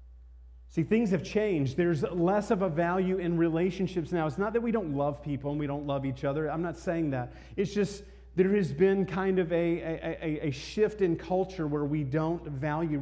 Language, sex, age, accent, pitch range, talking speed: English, male, 40-59, American, 125-165 Hz, 210 wpm